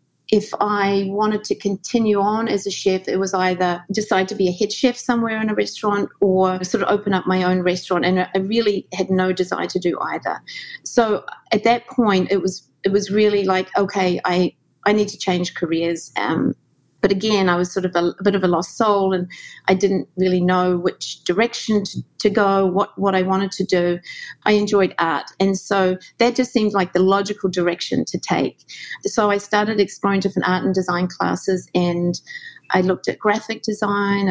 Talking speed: 200 wpm